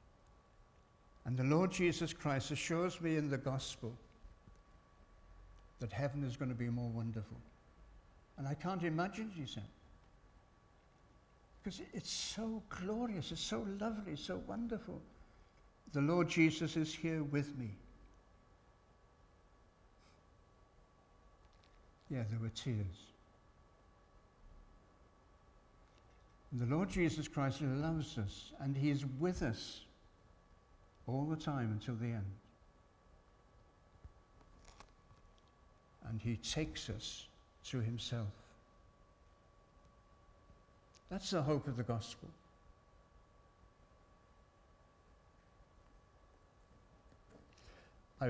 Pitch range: 95-140 Hz